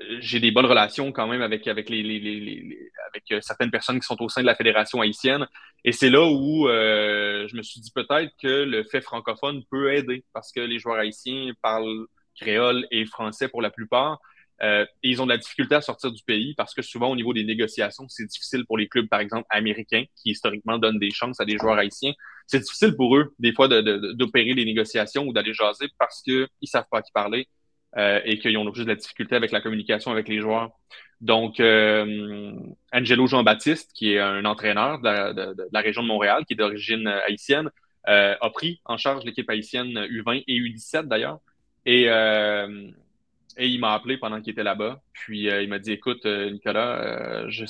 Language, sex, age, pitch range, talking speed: French, male, 20-39, 105-130 Hz, 220 wpm